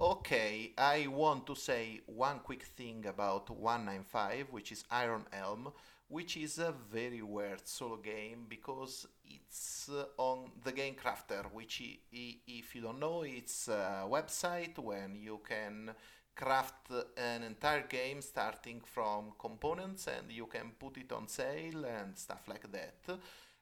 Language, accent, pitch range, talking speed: English, Italian, 115-145 Hz, 150 wpm